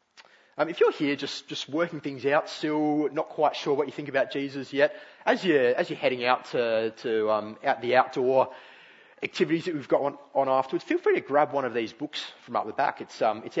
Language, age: English, 30-49